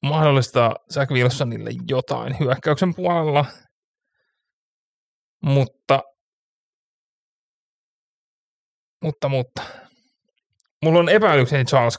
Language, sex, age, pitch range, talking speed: Finnish, male, 30-49, 120-160 Hz, 65 wpm